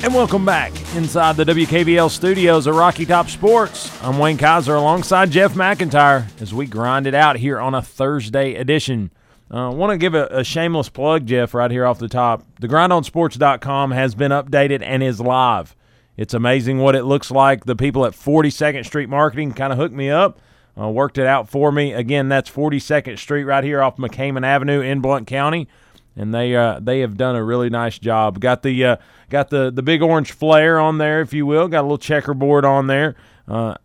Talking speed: 205 wpm